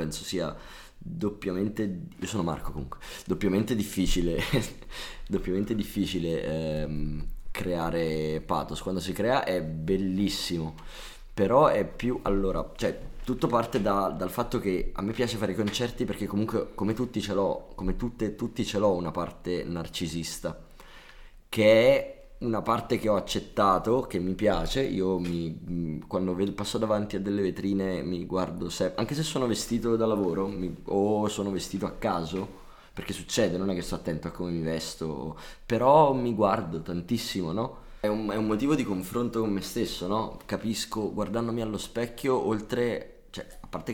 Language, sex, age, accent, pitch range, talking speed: Italian, male, 20-39, native, 85-110 Hz, 160 wpm